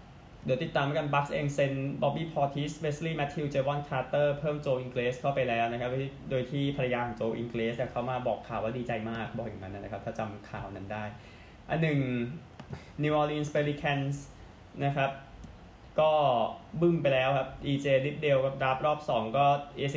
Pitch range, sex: 115-145 Hz, male